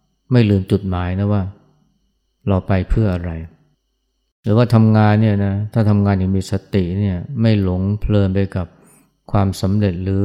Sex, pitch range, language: male, 95-110 Hz, Thai